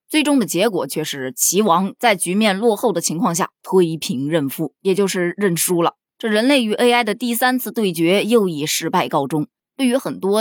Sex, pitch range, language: female, 170-245 Hz, Chinese